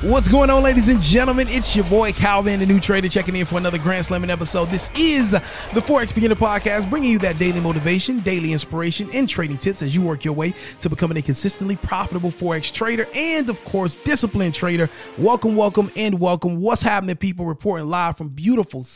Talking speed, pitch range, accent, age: 205 wpm, 150-205 Hz, American, 30-49